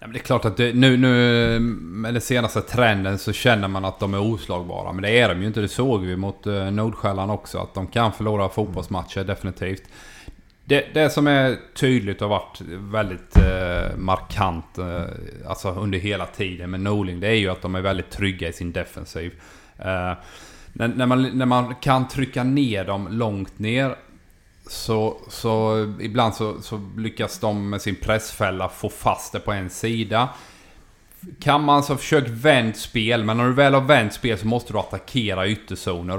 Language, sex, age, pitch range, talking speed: Swedish, male, 30-49, 95-115 Hz, 190 wpm